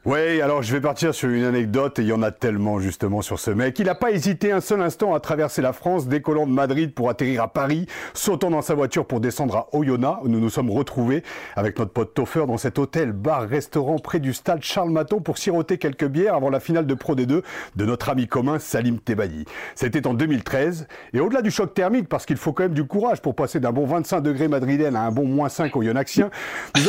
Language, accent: French, French